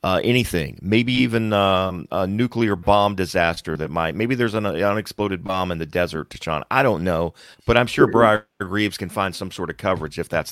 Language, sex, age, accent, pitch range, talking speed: English, male, 40-59, American, 85-110 Hz, 215 wpm